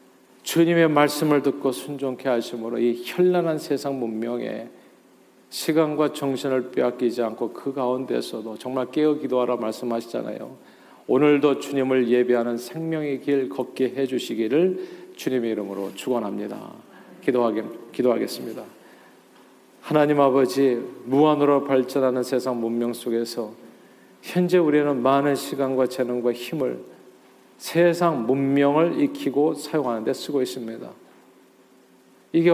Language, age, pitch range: Korean, 40-59, 125-155 Hz